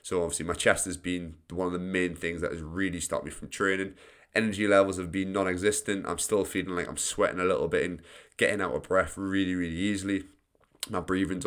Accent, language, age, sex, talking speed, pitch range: British, English, 20-39, male, 220 wpm, 90-100 Hz